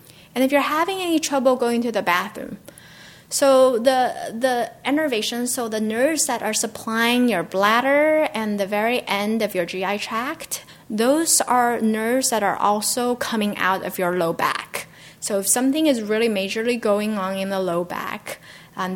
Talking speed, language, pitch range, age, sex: 175 wpm, English, 190-235 Hz, 10-29, female